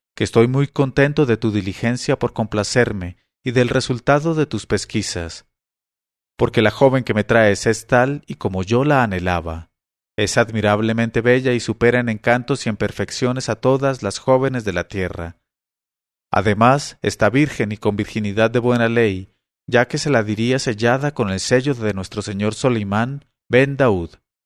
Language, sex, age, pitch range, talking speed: English, male, 40-59, 105-130 Hz, 170 wpm